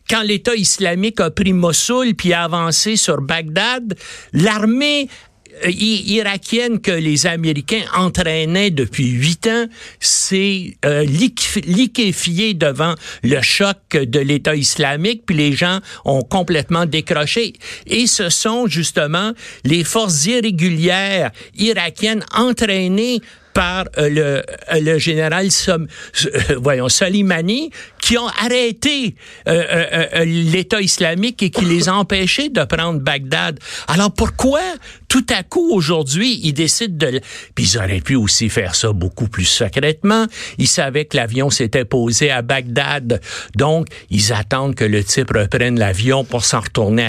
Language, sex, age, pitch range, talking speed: French, male, 60-79, 135-205 Hz, 135 wpm